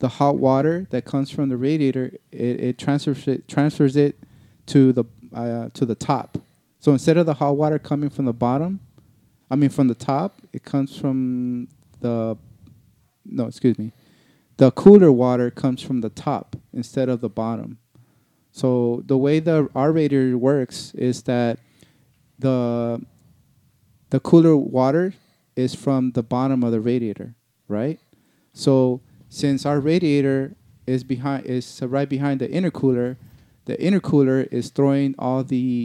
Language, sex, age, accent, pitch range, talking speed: English, male, 30-49, American, 120-140 Hz, 155 wpm